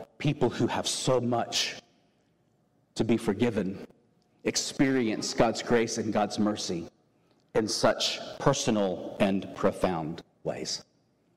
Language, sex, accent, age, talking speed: English, male, American, 40-59, 105 wpm